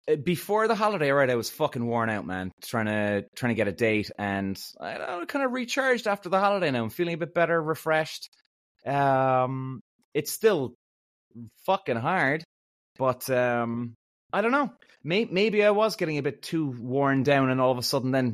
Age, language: 20-39, English